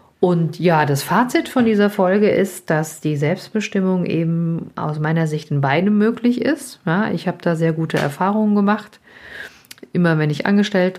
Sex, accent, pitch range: female, German, 155-190 Hz